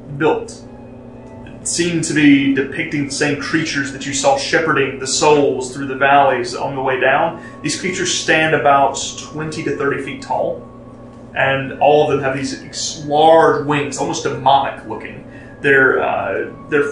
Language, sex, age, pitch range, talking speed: English, male, 30-49, 125-150 Hz, 155 wpm